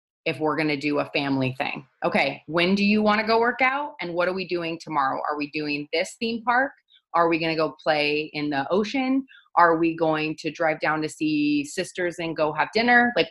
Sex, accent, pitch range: female, American, 150-205 Hz